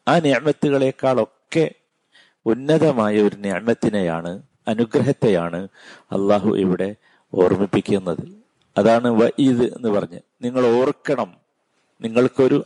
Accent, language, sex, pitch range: native, Malayalam, male, 105-135 Hz